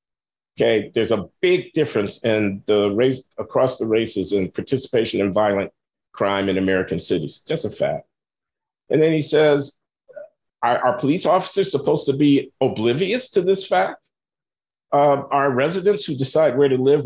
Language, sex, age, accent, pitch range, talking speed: English, male, 50-69, American, 125-150 Hz, 160 wpm